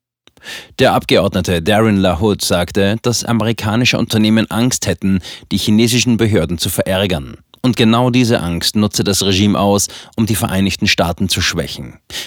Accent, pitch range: German, 95-120 Hz